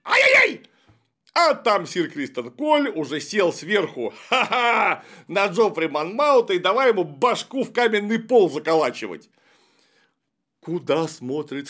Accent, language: native, Russian